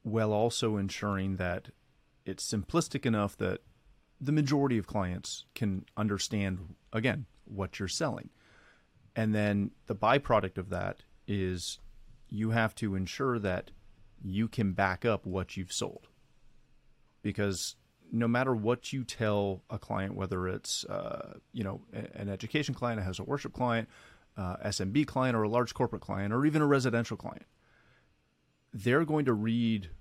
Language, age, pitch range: English, 30-49, 100-125 Hz